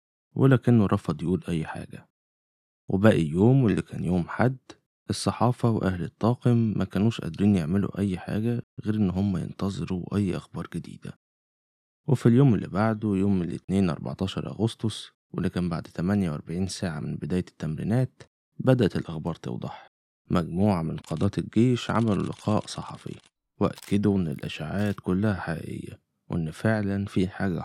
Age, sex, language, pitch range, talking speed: 20-39, male, Arabic, 90-115 Hz, 135 wpm